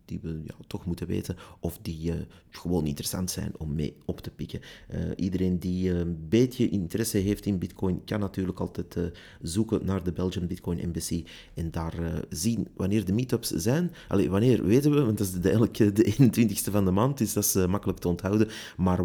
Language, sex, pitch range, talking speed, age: Dutch, male, 90-110 Hz, 200 wpm, 30-49